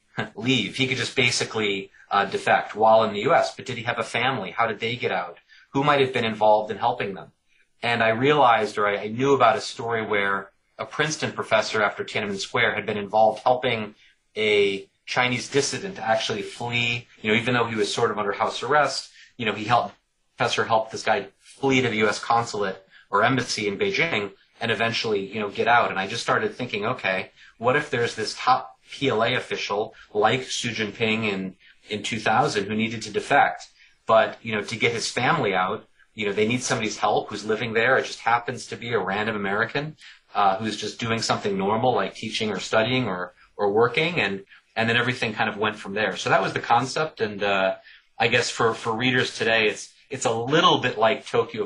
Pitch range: 105-125 Hz